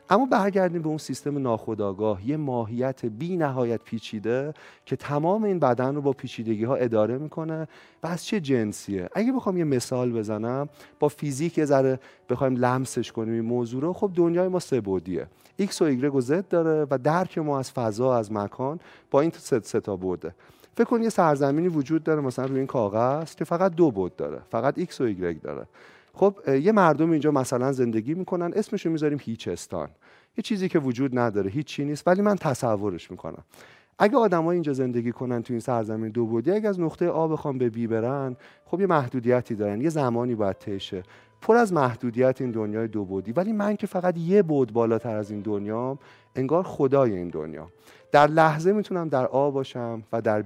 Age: 40-59